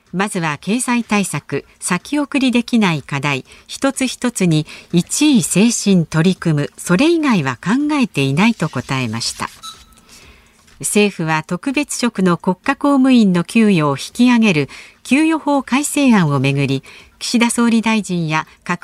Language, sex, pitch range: Japanese, female, 165-240 Hz